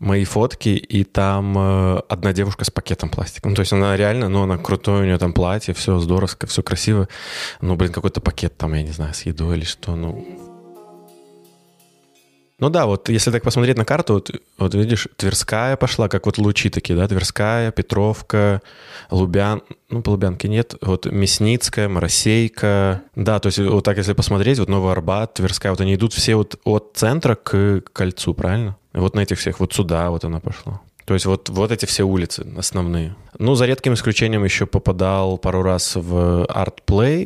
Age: 20-39